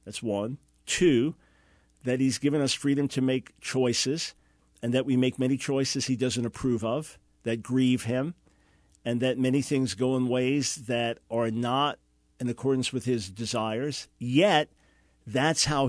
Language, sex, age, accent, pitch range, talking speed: English, male, 50-69, American, 120-145 Hz, 160 wpm